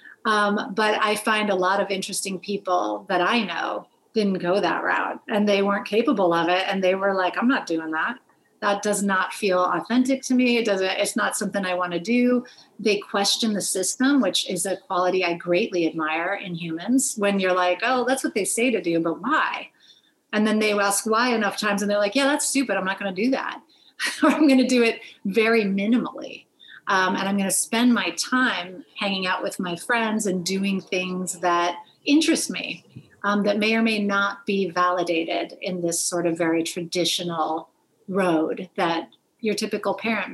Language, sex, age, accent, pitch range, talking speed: English, female, 30-49, American, 180-225 Hz, 200 wpm